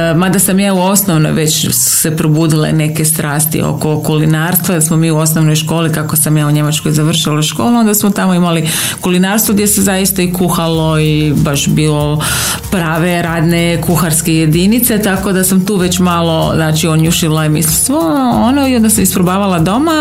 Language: Croatian